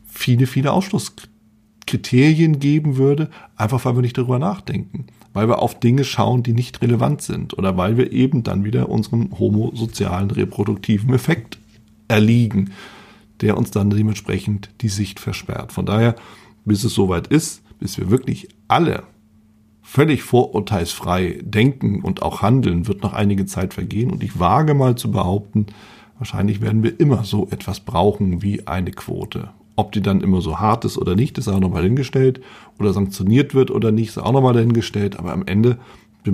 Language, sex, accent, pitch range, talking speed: German, male, German, 100-120 Hz, 165 wpm